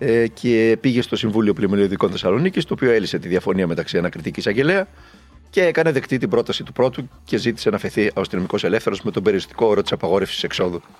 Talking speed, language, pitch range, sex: 185 wpm, Greek, 75-120 Hz, male